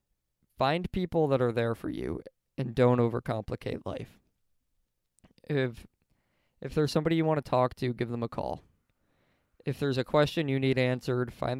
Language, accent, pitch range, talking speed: English, American, 115-135 Hz, 165 wpm